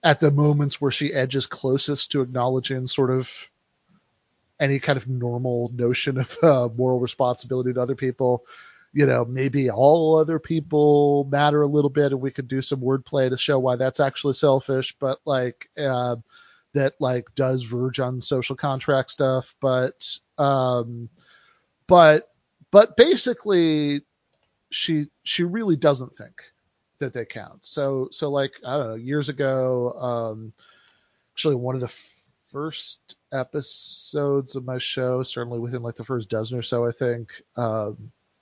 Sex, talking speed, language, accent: male, 155 wpm, English, American